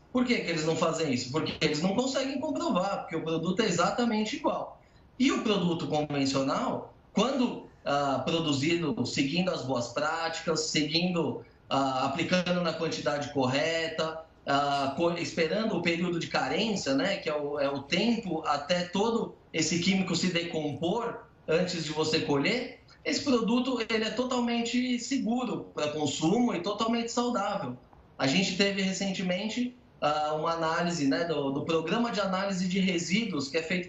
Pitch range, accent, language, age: 160-230 Hz, Brazilian, Portuguese, 20-39